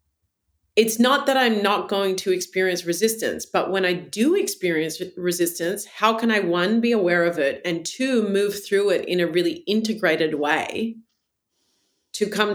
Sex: female